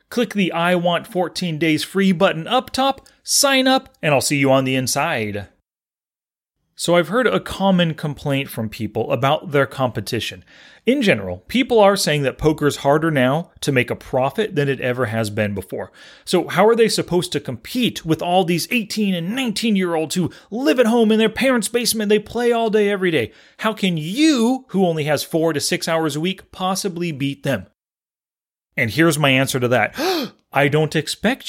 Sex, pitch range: male, 135-205 Hz